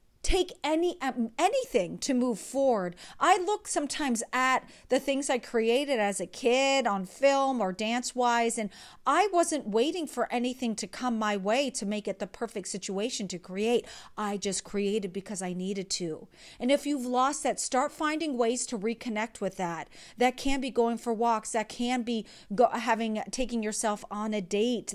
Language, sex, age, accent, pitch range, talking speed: English, female, 40-59, American, 205-260 Hz, 185 wpm